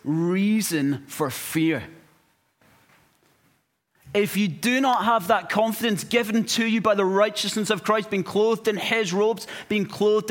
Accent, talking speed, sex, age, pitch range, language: British, 145 wpm, male, 30-49, 135-190 Hz, English